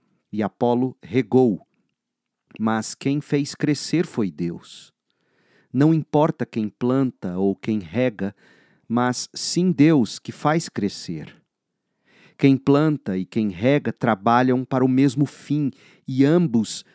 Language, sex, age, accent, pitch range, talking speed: Portuguese, male, 40-59, Brazilian, 115-145 Hz, 120 wpm